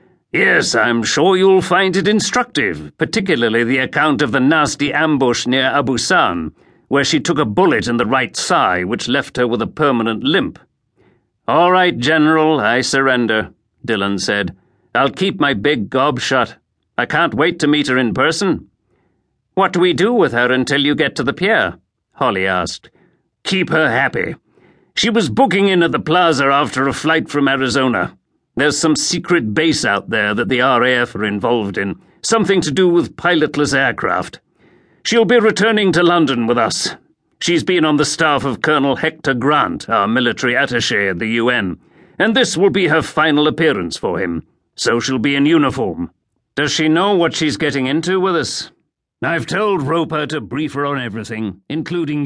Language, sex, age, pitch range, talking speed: English, male, 50-69, 125-175 Hz, 175 wpm